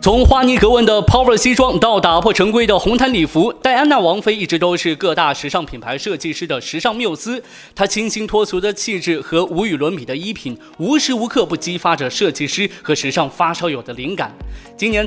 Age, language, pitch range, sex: 20-39, Chinese, 165-230 Hz, male